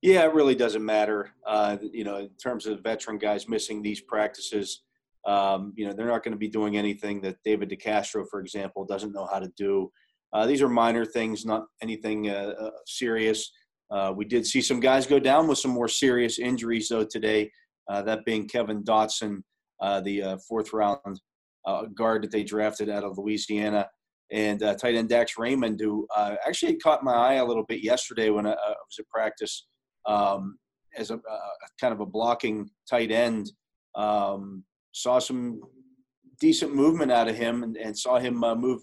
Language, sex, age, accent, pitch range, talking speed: English, male, 40-59, American, 105-120 Hz, 190 wpm